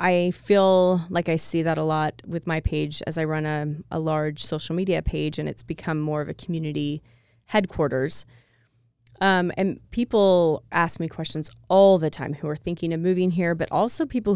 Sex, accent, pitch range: female, American, 150-185 Hz